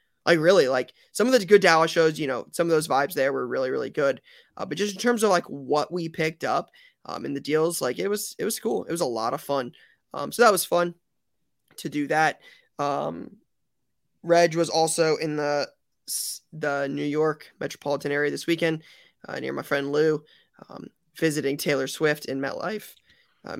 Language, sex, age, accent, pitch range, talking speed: English, male, 20-39, American, 145-180 Hz, 205 wpm